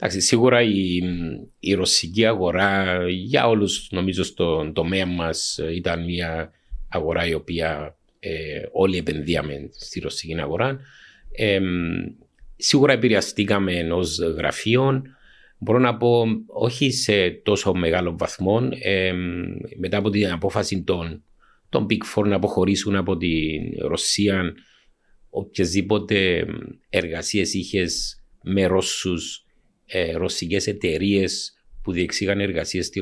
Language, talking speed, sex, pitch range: Greek, 105 wpm, male, 85-100 Hz